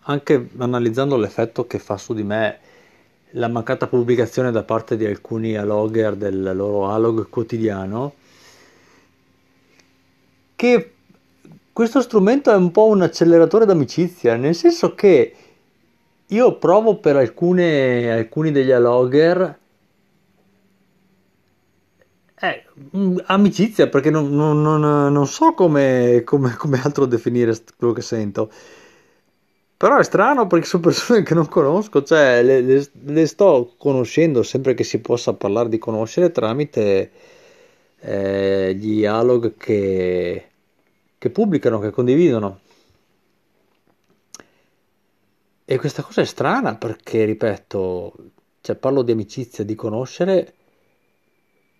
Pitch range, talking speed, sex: 110-170 Hz, 110 wpm, male